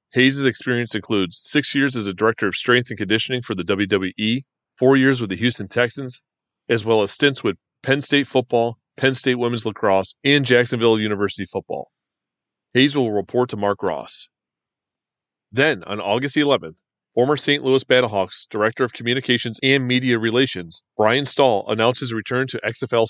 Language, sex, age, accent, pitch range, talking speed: English, male, 40-59, American, 110-130 Hz, 165 wpm